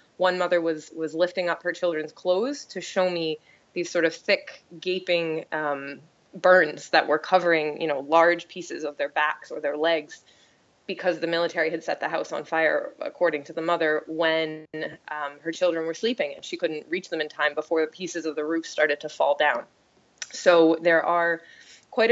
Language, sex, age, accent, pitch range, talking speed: English, female, 20-39, American, 160-180 Hz, 195 wpm